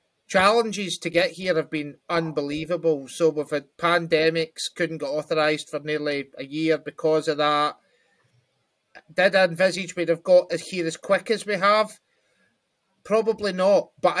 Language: English